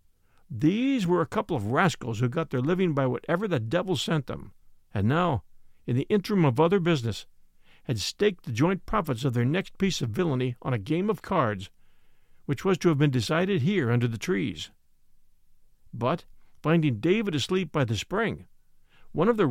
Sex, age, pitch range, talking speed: male, 50-69, 120-180 Hz, 185 wpm